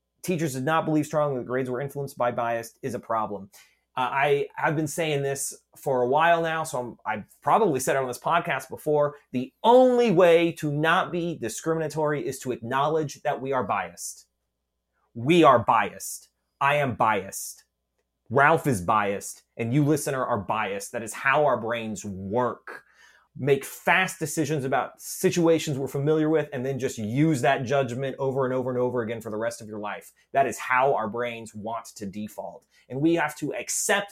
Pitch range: 120-165 Hz